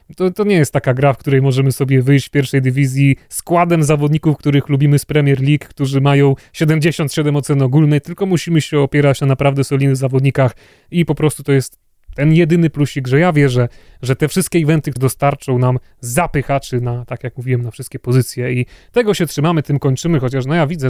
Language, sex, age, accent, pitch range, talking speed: Polish, male, 30-49, native, 135-160 Hz, 200 wpm